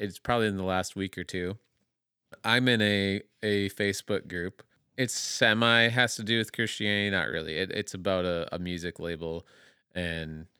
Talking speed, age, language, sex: 175 wpm, 30-49, English, male